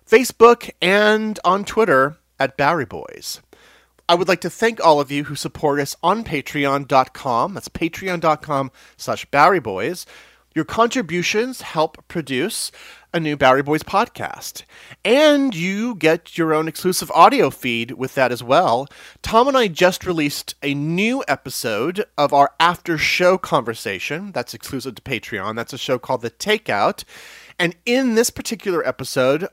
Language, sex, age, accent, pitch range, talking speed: English, male, 30-49, American, 140-210 Hz, 150 wpm